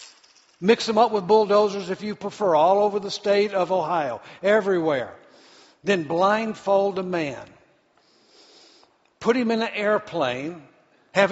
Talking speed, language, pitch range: 135 wpm, English, 165-215 Hz